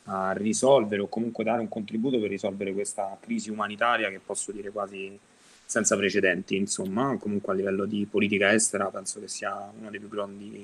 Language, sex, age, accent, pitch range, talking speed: Italian, male, 20-39, native, 100-110 Hz, 180 wpm